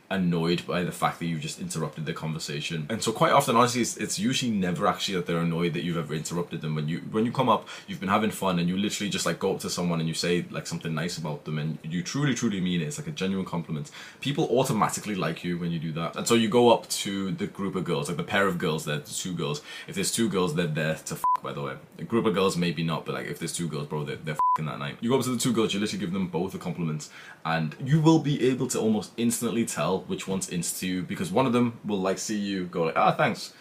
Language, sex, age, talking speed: English, male, 20-39, 285 wpm